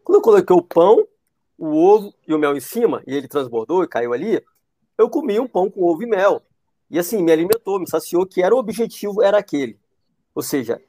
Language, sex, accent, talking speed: Portuguese, male, Brazilian, 220 wpm